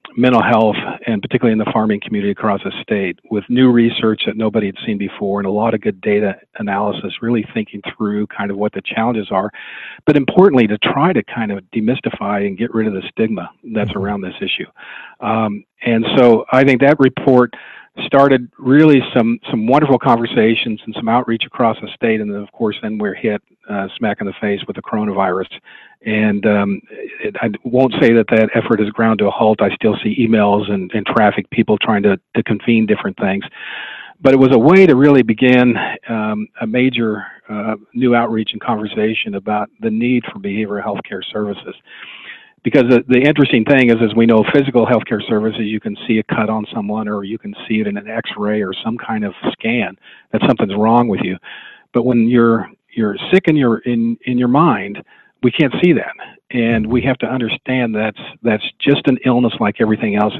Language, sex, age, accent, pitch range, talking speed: English, male, 50-69, American, 105-125 Hz, 205 wpm